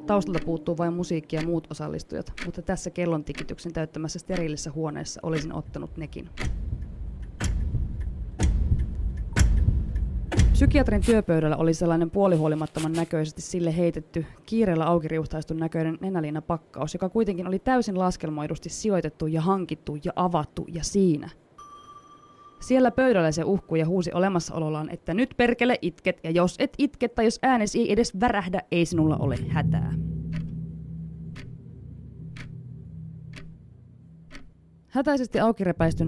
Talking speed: 115 wpm